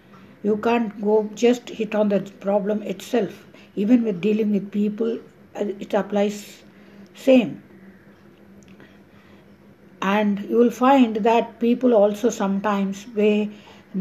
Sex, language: female, English